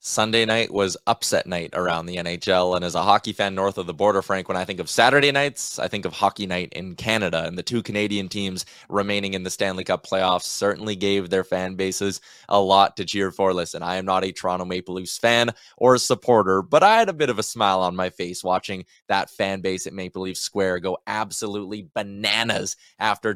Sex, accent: male, American